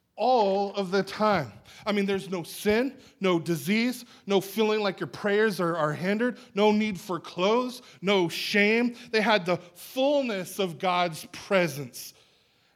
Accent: American